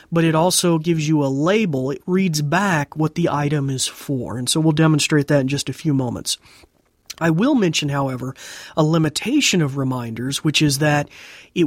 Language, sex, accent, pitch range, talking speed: English, male, American, 140-175 Hz, 190 wpm